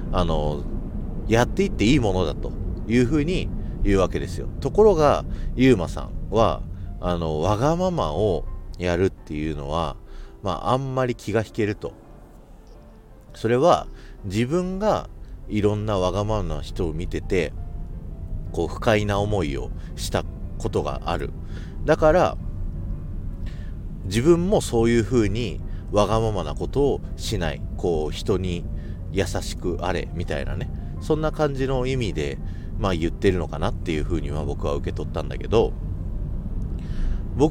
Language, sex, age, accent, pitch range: Japanese, male, 40-59, native, 85-115 Hz